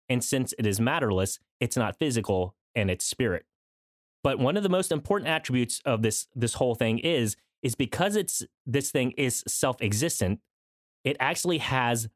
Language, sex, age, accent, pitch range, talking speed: English, male, 30-49, American, 110-150 Hz, 170 wpm